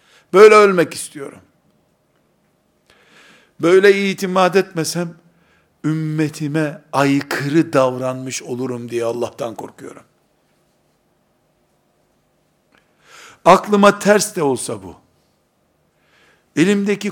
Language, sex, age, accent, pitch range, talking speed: Turkish, male, 60-79, native, 120-175 Hz, 65 wpm